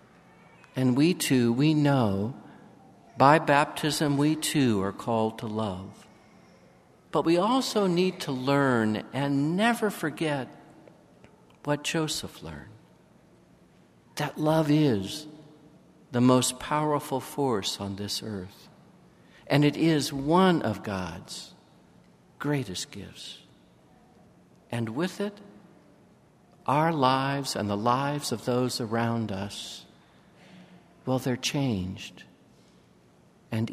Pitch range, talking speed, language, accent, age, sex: 110-155 Hz, 105 wpm, English, American, 60-79, male